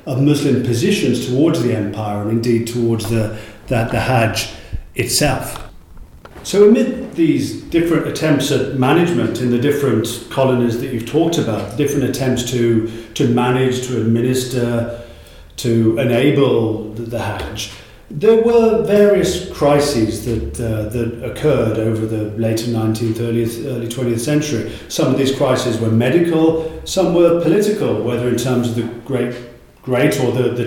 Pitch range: 115-150 Hz